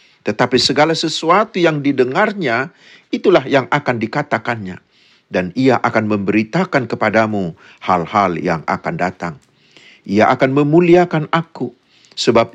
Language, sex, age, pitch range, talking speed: Indonesian, male, 50-69, 115-160 Hz, 110 wpm